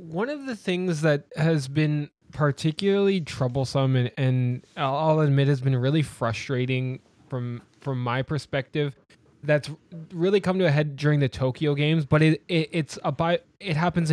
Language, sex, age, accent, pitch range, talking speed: English, male, 20-39, American, 135-170 Hz, 165 wpm